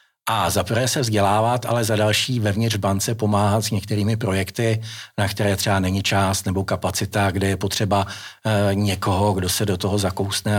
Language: Czech